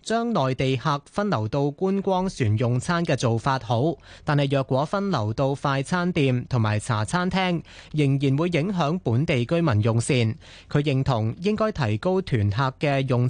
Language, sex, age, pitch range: Chinese, male, 20-39, 125-170 Hz